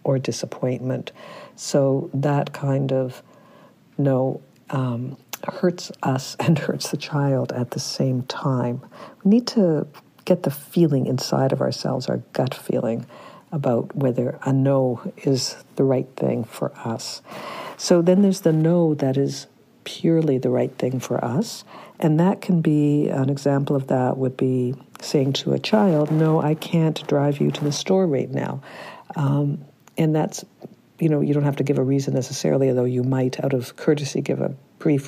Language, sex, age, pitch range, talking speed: English, female, 60-79, 130-160 Hz, 170 wpm